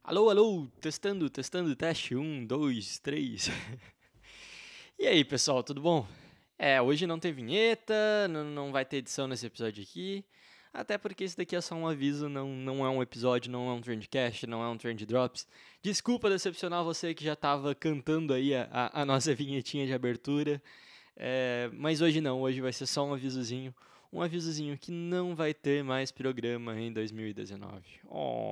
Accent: Brazilian